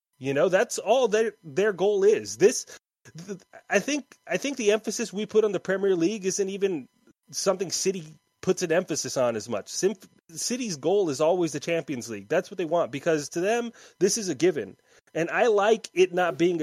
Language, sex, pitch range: English, male, 145-200 Hz